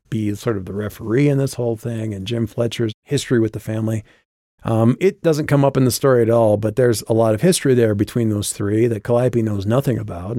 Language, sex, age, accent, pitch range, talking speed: English, male, 40-59, American, 105-120 Hz, 235 wpm